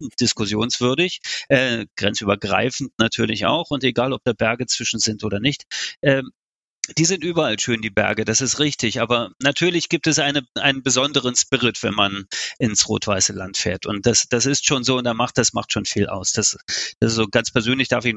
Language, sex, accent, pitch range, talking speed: German, male, German, 115-150 Hz, 200 wpm